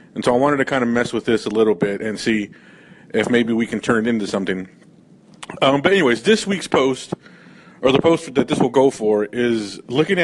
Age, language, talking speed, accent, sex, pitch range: 30-49, English, 230 wpm, American, male, 110-135 Hz